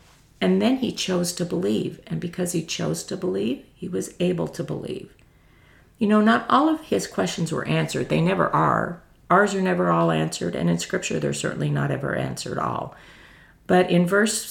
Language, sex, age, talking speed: English, female, 50-69, 190 wpm